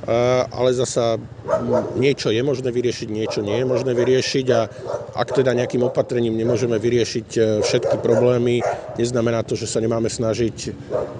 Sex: male